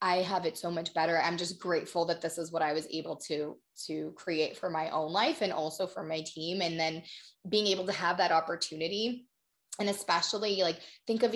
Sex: female